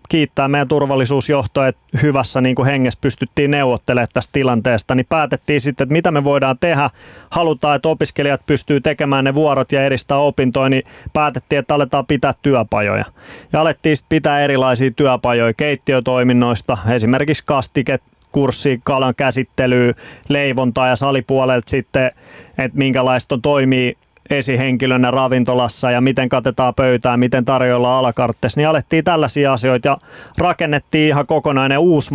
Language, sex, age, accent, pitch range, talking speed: Finnish, male, 20-39, native, 130-145 Hz, 135 wpm